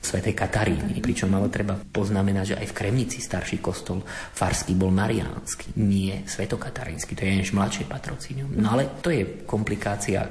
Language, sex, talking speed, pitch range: Slovak, male, 155 wpm, 95-110 Hz